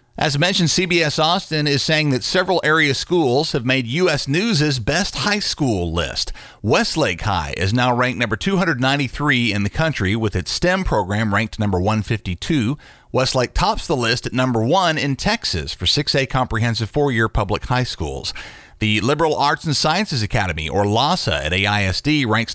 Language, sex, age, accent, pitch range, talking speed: English, male, 40-59, American, 105-145 Hz, 165 wpm